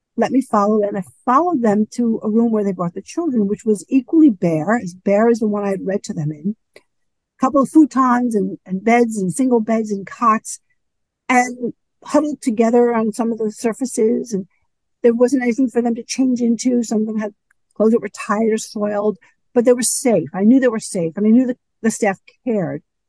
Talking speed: 220 wpm